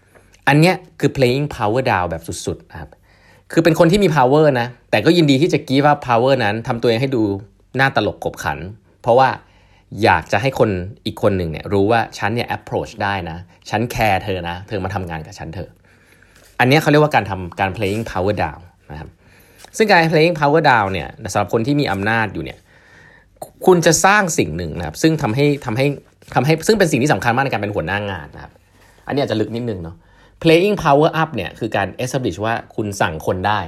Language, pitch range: Thai, 95-135 Hz